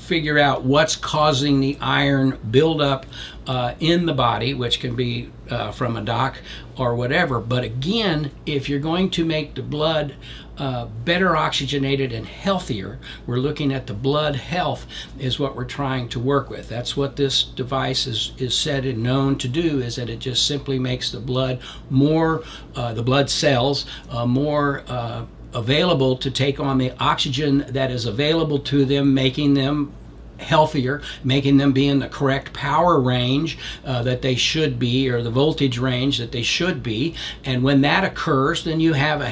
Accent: American